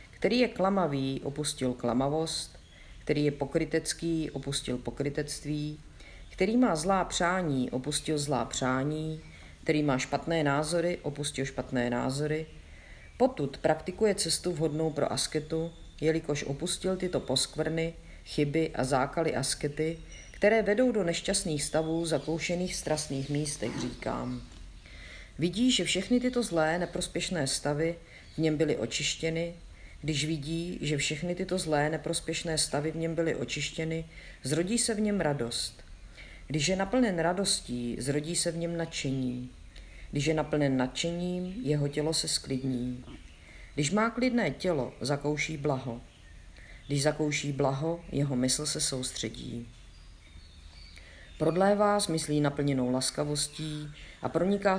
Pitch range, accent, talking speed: 130-165 Hz, native, 125 wpm